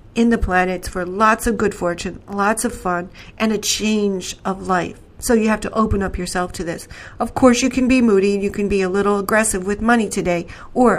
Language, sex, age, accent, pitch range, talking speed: English, female, 40-59, American, 195-230 Hz, 230 wpm